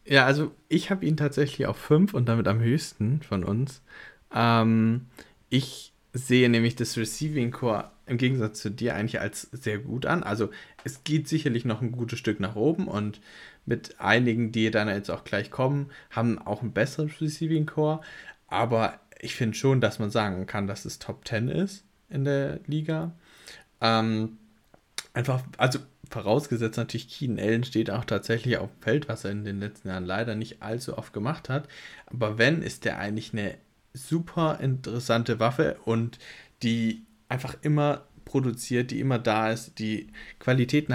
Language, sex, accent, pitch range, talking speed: German, male, German, 110-135 Hz, 165 wpm